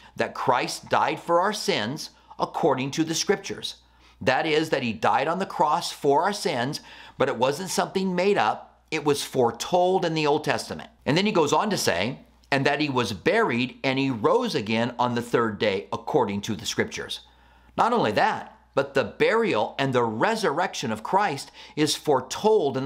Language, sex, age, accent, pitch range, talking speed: English, male, 40-59, American, 125-175 Hz, 190 wpm